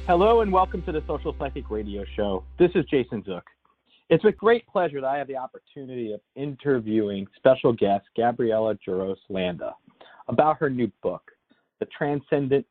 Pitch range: 115-165 Hz